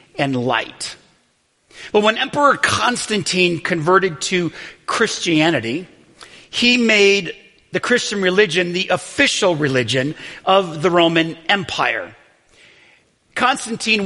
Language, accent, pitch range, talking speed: English, American, 140-195 Hz, 95 wpm